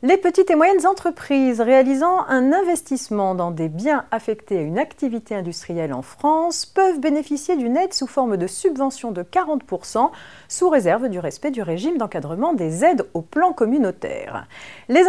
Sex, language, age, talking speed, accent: female, French, 40-59, 165 wpm, French